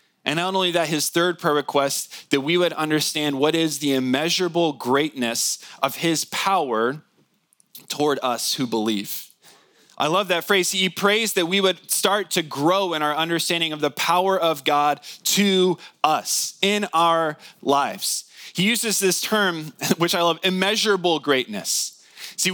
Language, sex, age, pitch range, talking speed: English, male, 20-39, 150-190 Hz, 155 wpm